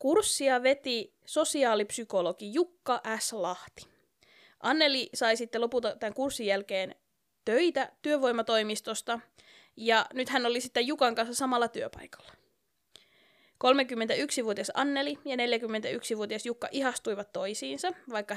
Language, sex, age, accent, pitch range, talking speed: Finnish, female, 20-39, native, 200-255 Hz, 105 wpm